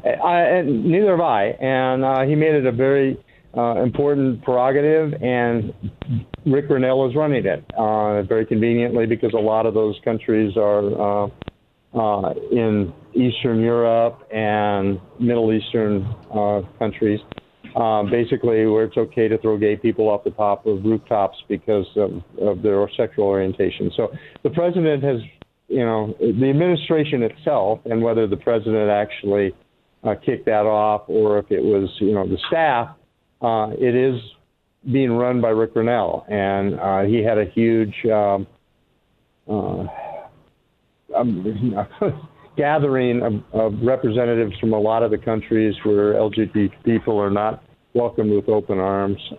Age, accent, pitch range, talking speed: 50-69, American, 105-130 Hz, 150 wpm